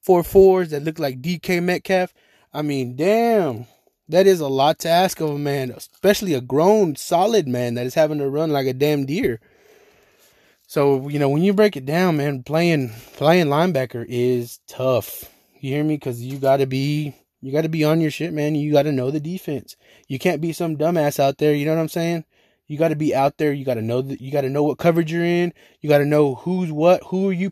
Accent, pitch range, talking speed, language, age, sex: American, 140-175 Hz, 240 wpm, English, 20-39, male